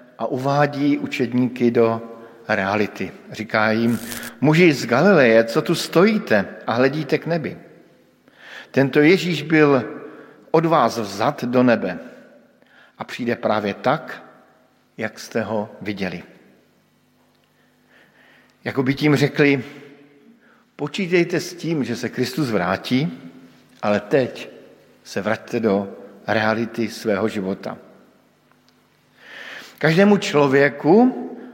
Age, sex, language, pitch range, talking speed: 50-69, male, Slovak, 120-155 Hz, 100 wpm